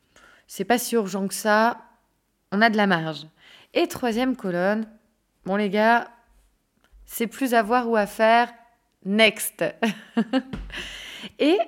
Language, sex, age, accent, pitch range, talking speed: French, female, 20-39, French, 185-250 Hz, 135 wpm